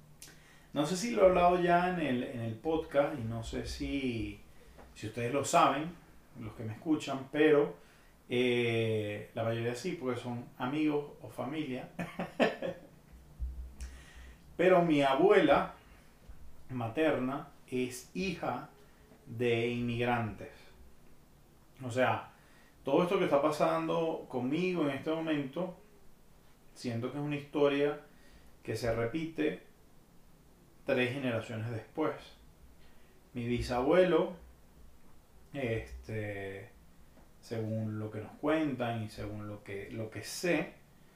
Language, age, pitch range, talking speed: Spanish, 30-49, 110-150 Hz, 115 wpm